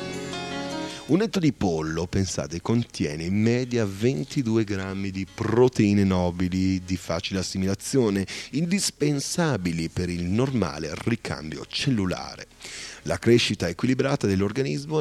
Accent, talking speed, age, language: native, 105 wpm, 30-49, Italian